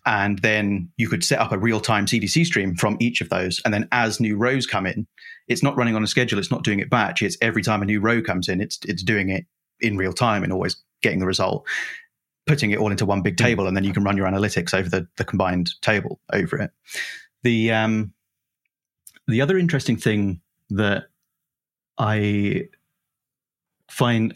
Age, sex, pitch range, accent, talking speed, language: 30-49, male, 100-120 Hz, British, 200 wpm, English